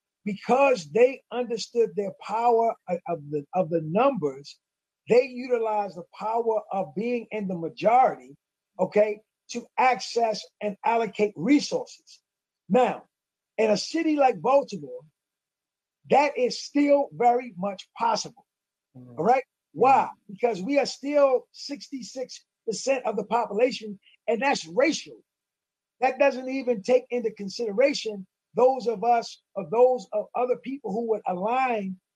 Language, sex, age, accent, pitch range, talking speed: English, male, 50-69, American, 200-250 Hz, 125 wpm